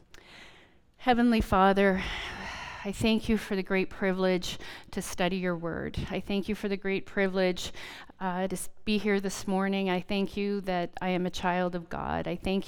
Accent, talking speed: American, 180 wpm